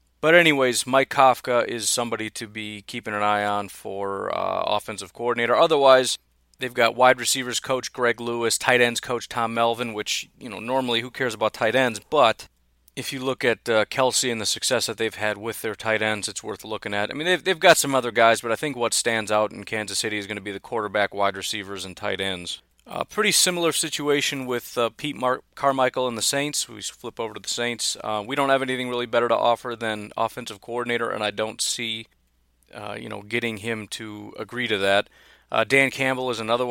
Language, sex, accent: English, male, American